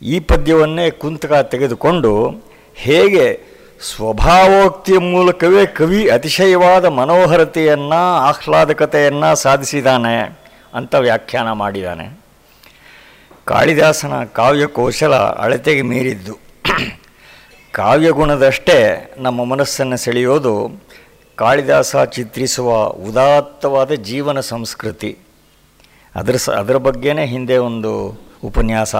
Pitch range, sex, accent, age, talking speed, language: 125-160 Hz, male, native, 50-69, 75 wpm, Kannada